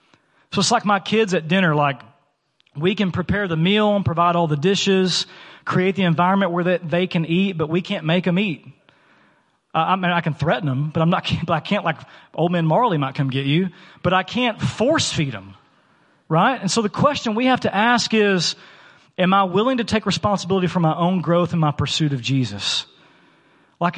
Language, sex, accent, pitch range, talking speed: English, male, American, 155-200 Hz, 215 wpm